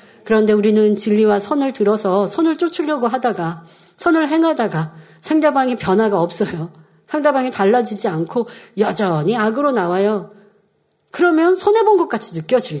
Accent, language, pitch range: native, Korean, 200-310 Hz